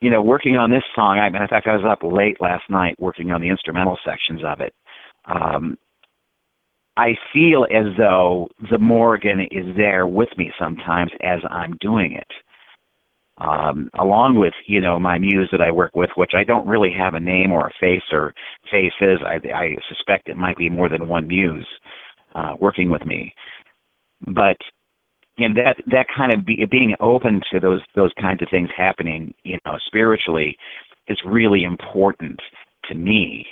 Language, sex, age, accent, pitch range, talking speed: English, male, 50-69, American, 90-105 Hz, 180 wpm